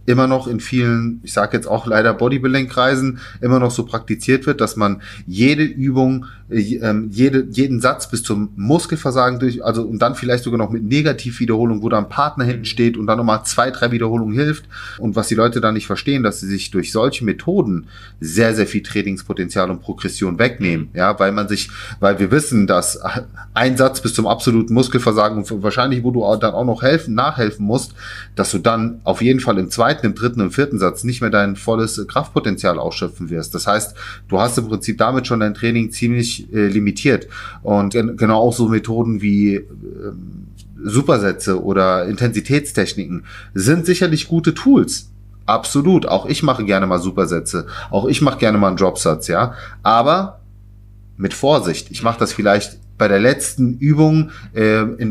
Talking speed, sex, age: 180 wpm, male, 30-49